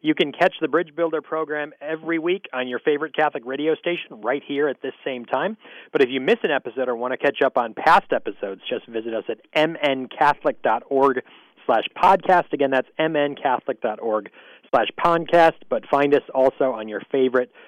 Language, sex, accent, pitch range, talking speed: English, male, American, 115-160 Hz, 185 wpm